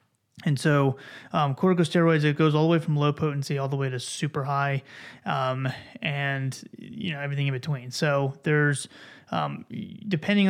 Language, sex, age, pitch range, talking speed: English, male, 20-39, 140-160 Hz, 165 wpm